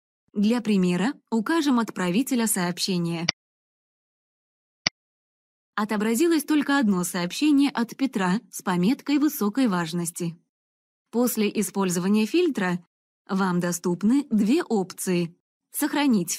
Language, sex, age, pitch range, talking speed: Russian, female, 20-39, 180-255 Hz, 85 wpm